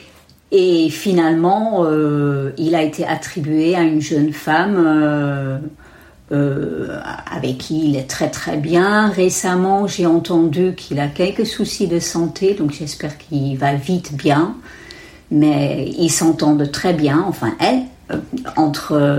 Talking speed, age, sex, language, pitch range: 135 wpm, 50-69, female, French, 145-180 Hz